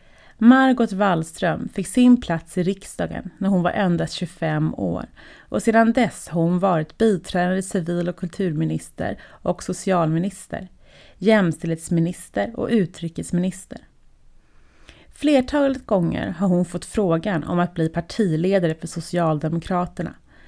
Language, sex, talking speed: Swedish, female, 115 wpm